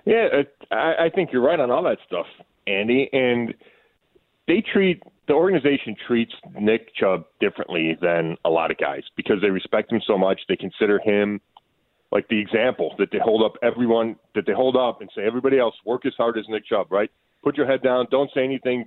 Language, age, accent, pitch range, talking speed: English, 40-59, American, 115-140 Hz, 200 wpm